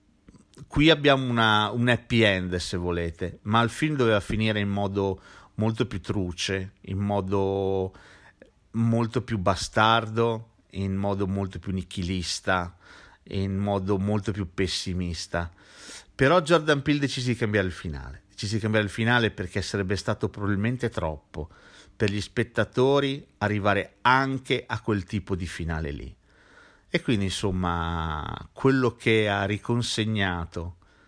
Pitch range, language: 95-120 Hz, Italian